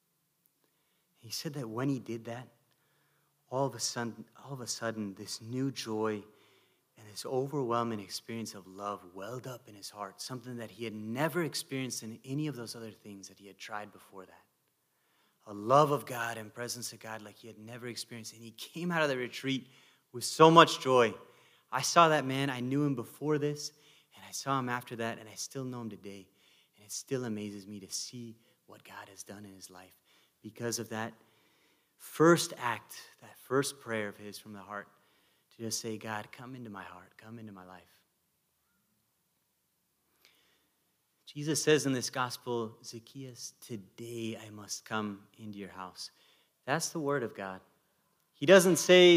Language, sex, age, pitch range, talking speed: English, male, 30-49, 105-135 Hz, 185 wpm